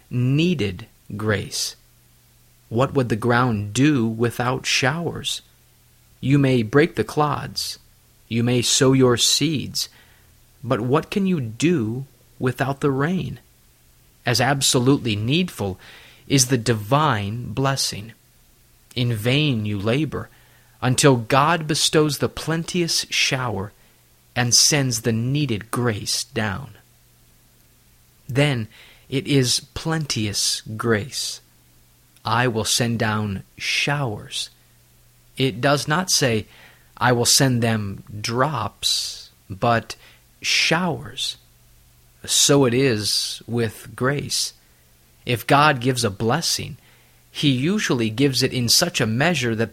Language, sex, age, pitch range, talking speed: English, male, 30-49, 110-140 Hz, 110 wpm